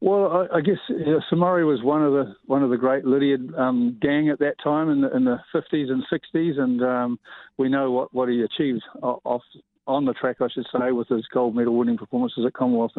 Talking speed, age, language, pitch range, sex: 240 wpm, 50-69, English, 120-145 Hz, male